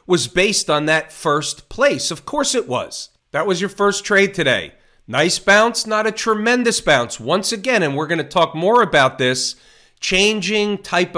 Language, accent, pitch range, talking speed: English, American, 145-185 Hz, 175 wpm